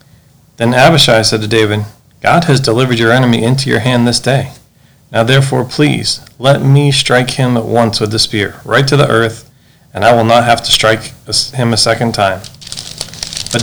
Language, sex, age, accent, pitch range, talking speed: English, male, 40-59, American, 110-135 Hz, 190 wpm